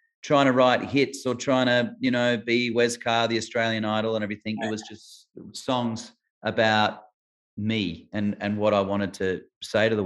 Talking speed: 190 wpm